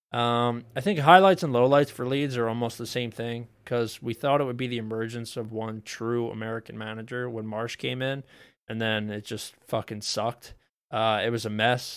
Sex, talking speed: male, 205 wpm